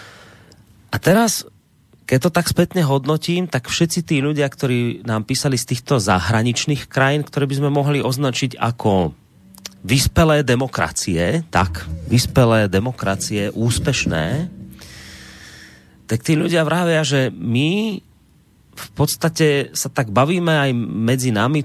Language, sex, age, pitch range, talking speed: Slovak, male, 30-49, 115-150 Hz, 120 wpm